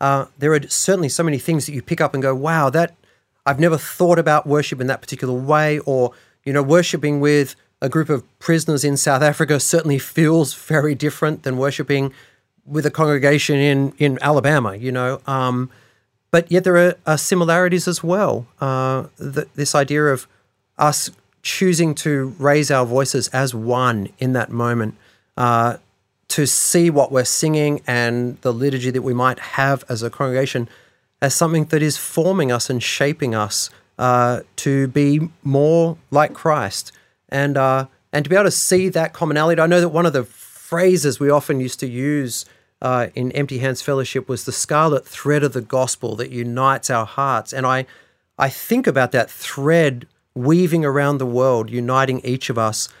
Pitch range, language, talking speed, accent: 125-155 Hz, English, 180 wpm, Australian